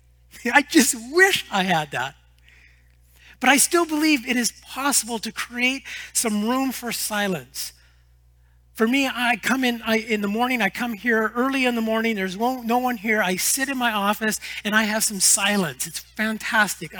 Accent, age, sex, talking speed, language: American, 40-59, male, 180 wpm, English